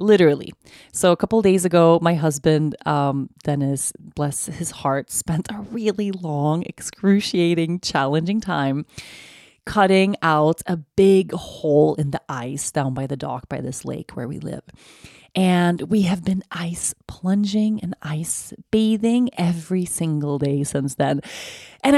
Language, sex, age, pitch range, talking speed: English, female, 30-49, 155-210 Hz, 145 wpm